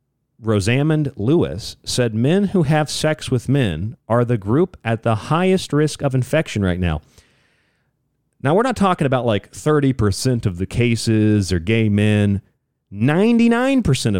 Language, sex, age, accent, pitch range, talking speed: English, male, 40-59, American, 105-150 Hz, 145 wpm